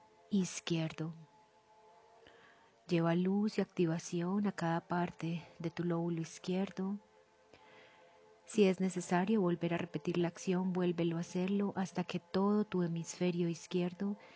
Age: 30-49